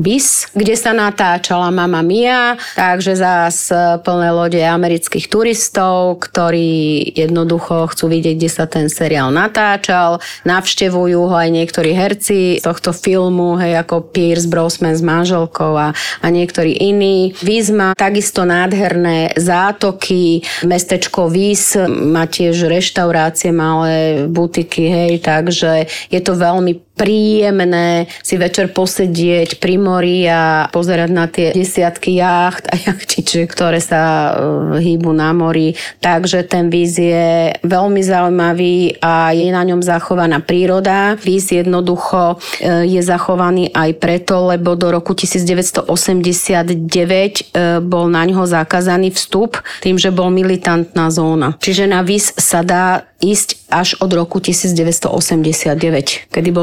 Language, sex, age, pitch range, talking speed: Slovak, female, 30-49, 170-185 Hz, 125 wpm